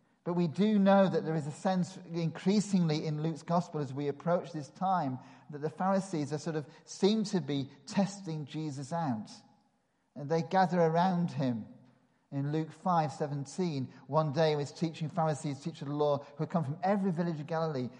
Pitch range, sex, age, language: 150-185 Hz, male, 40-59, English